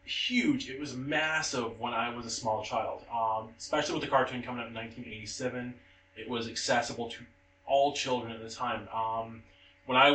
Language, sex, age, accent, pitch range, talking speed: English, male, 20-39, American, 110-130 Hz, 185 wpm